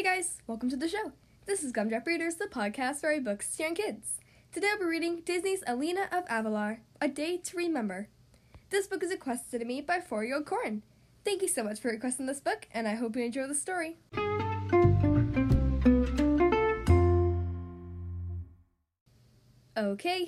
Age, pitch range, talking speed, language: 10-29, 225-340 Hz, 165 wpm, English